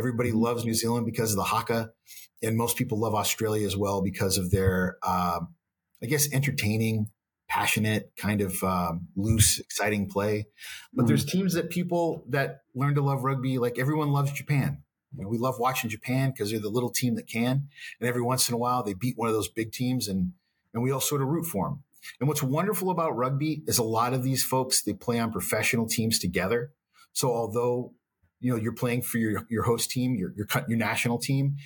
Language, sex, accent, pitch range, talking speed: English, male, American, 105-135 Hz, 210 wpm